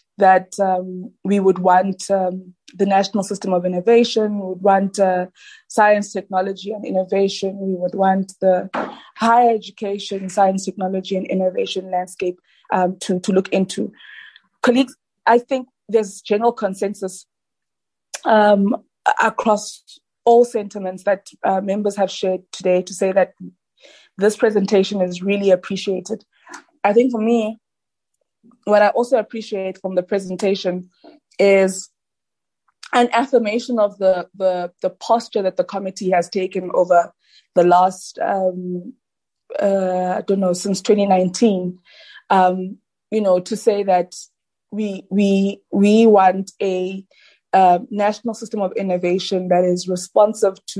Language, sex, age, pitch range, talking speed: English, female, 20-39, 185-215 Hz, 135 wpm